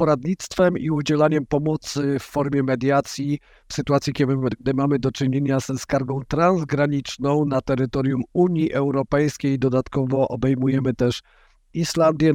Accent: native